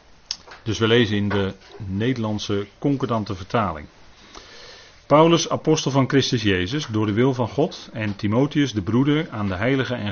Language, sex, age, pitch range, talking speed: Dutch, male, 40-59, 100-130 Hz, 155 wpm